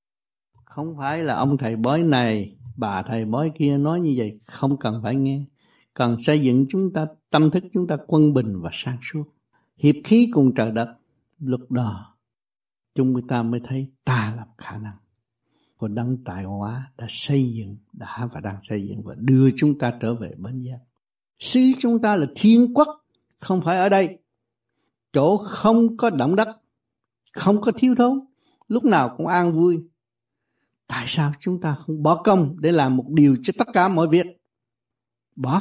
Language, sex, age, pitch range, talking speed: Vietnamese, male, 60-79, 120-175 Hz, 180 wpm